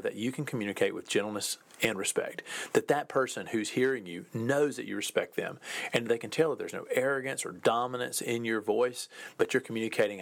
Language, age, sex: English, 40-59, male